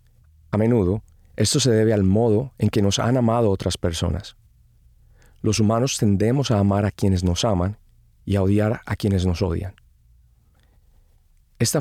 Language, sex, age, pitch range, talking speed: English, male, 40-59, 90-115 Hz, 160 wpm